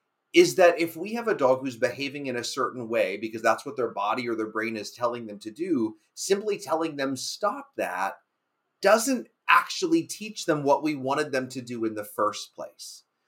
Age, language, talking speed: 30-49, English, 205 wpm